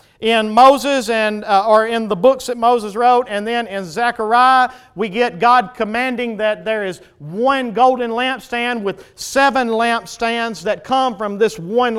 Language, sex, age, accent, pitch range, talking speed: English, male, 50-69, American, 205-245 Hz, 165 wpm